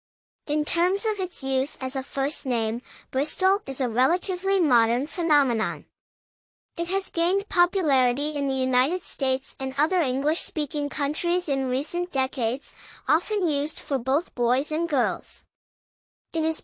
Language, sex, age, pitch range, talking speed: English, male, 10-29, 265-335 Hz, 140 wpm